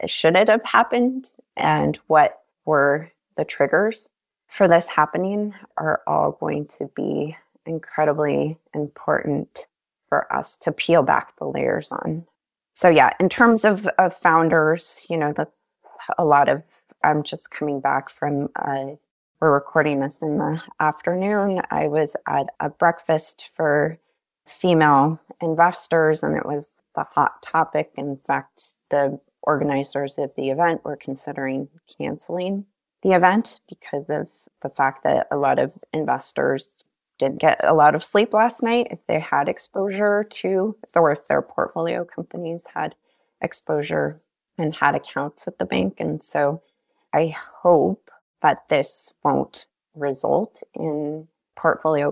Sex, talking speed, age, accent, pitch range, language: female, 140 wpm, 20-39, American, 145-185 Hz, English